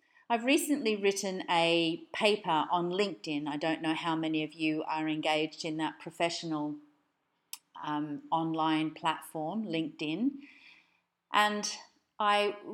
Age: 40-59